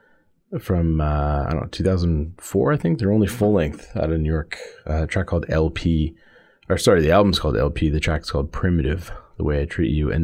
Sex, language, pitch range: male, English, 75-90 Hz